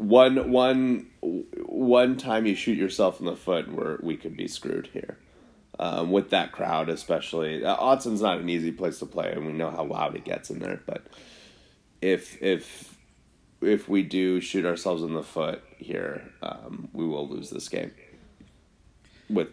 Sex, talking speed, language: male, 170 wpm, English